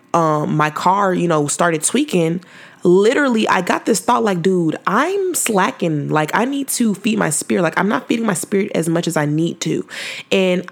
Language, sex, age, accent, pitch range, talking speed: English, female, 20-39, American, 160-200 Hz, 195 wpm